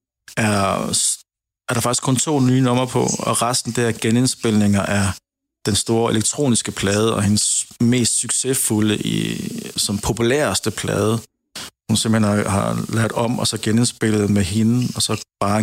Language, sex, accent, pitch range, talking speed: Danish, male, native, 105-115 Hz, 150 wpm